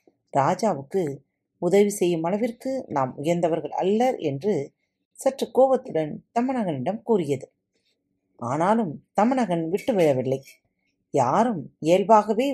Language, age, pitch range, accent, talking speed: Tamil, 30-49, 145-230 Hz, native, 75 wpm